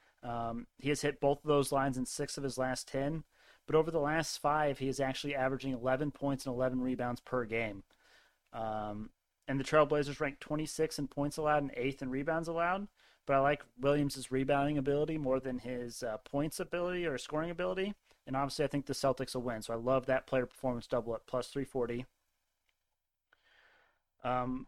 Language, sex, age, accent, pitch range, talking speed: English, male, 30-49, American, 130-145 Hz, 195 wpm